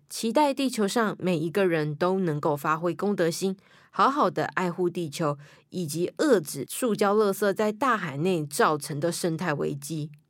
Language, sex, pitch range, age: Chinese, female, 165-220 Hz, 20-39